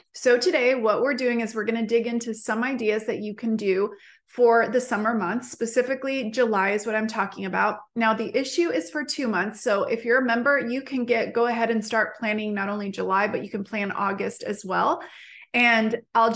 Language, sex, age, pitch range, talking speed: English, female, 20-39, 200-235 Hz, 220 wpm